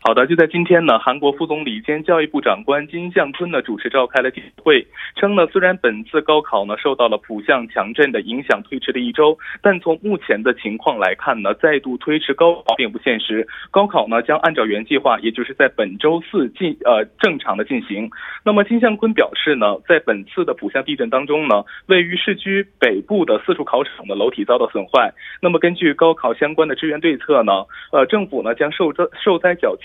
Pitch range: 150-205 Hz